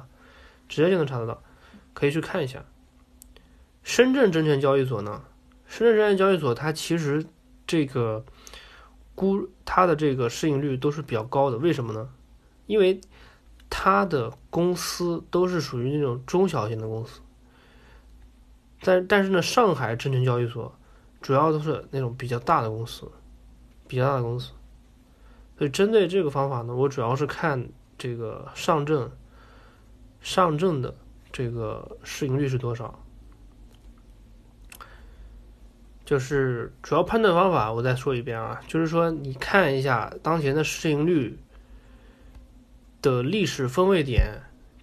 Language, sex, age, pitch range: Chinese, male, 20-39, 120-160 Hz